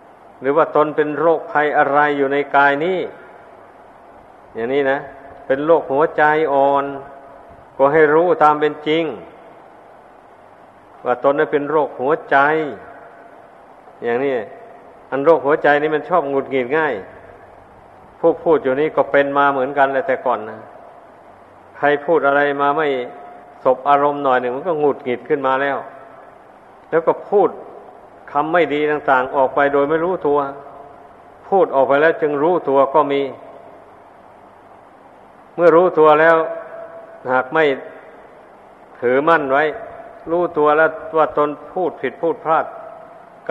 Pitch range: 140-160 Hz